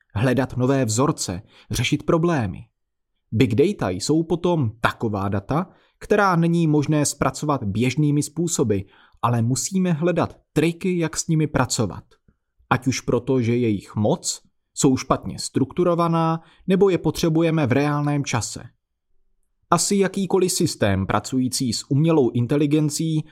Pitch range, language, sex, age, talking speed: 115-165 Hz, Czech, male, 30-49, 120 wpm